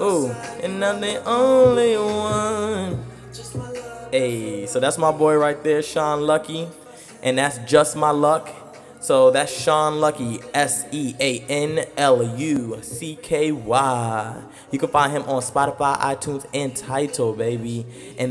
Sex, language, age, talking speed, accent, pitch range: male, English, 20-39, 145 wpm, American, 125-160 Hz